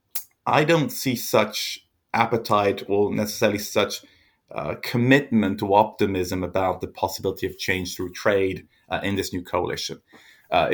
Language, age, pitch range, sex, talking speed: English, 30-49, 95-115 Hz, male, 140 wpm